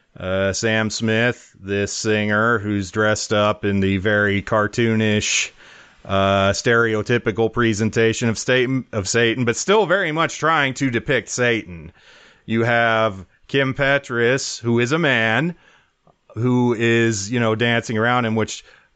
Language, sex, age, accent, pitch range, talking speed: English, male, 30-49, American, 105-120 Hz, 135 wpm